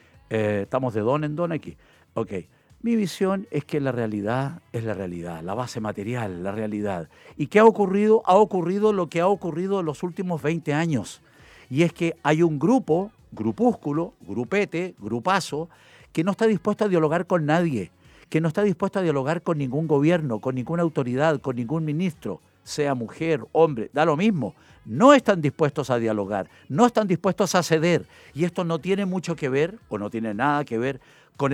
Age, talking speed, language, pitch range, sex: 50-69, 190 wpm, Spanish, 120-175 Hz, male